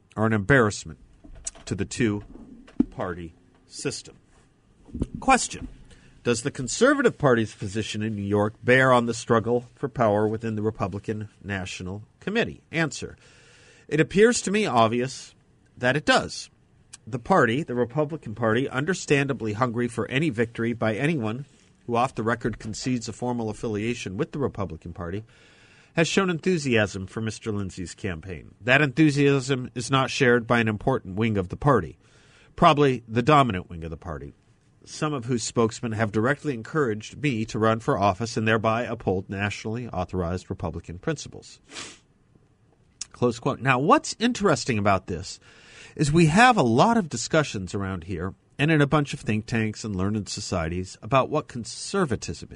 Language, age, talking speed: English, 50-69, 155 wpm